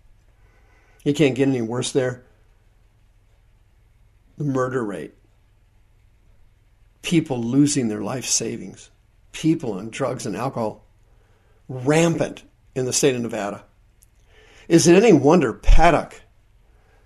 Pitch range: 100-140 Hz